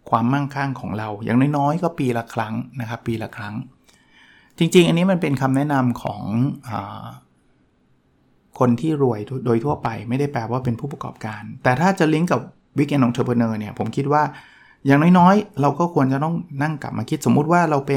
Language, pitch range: Thai, 115-145 Hz